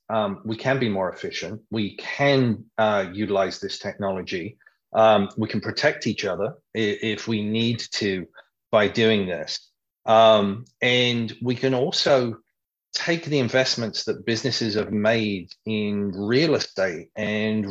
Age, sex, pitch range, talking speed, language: 30-49, male, 105-125 Hz, 140 wpm, English